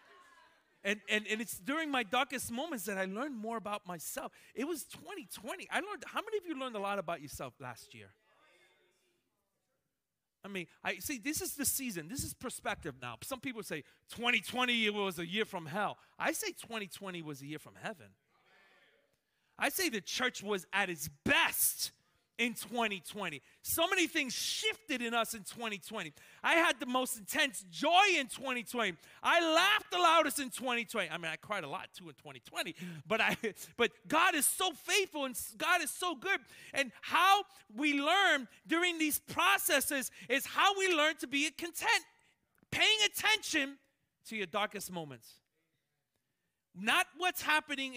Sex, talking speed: male, 170 wpm